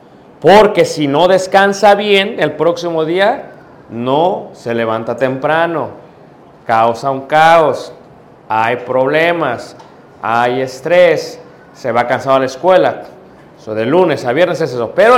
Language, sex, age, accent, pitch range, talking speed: Spanish, male, 40-59, Mexican, 130-170 Hz, 130 wpm